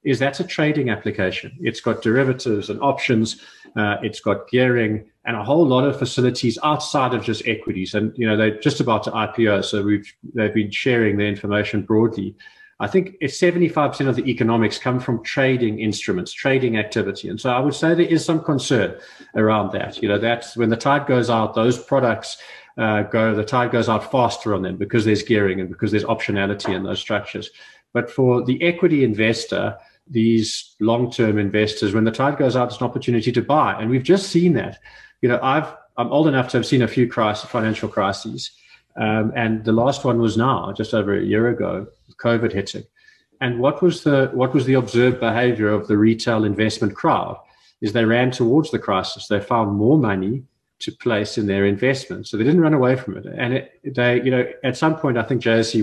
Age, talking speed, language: 40-59, 205 wpm, English